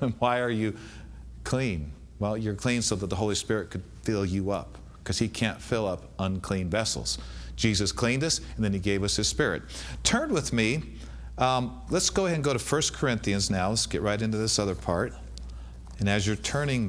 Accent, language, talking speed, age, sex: American, English, 205 wpm, 50-69, male